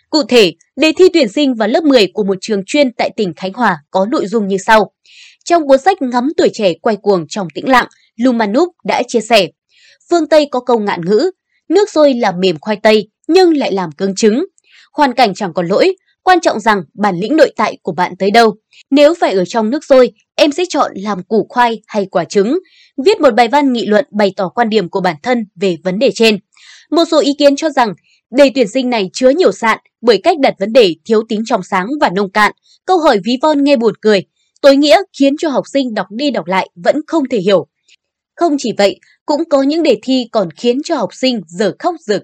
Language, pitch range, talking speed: Vietnamese, 205-295 Hz, 235 wpm